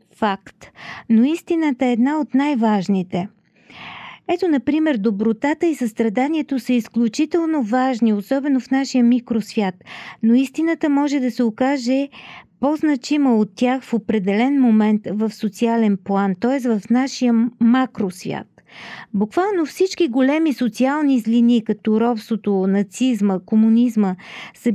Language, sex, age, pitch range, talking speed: Bulgarian, female, 40-59, 210-270 Hz, 115 wpm